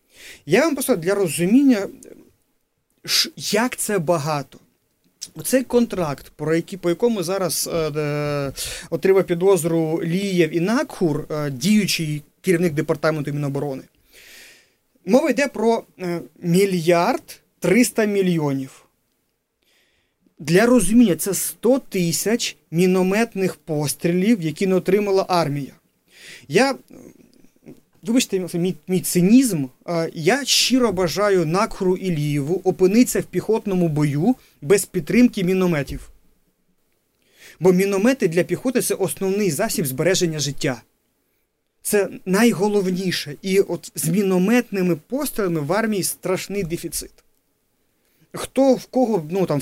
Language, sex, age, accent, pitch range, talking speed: Ukrainian, male, 30-49, native, 170-225 Hz, 95 wpm